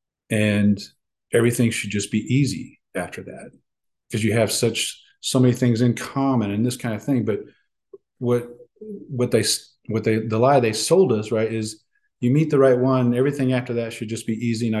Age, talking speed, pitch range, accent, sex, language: 40-59, 195 wpm, 110-130 Hz, American, male, English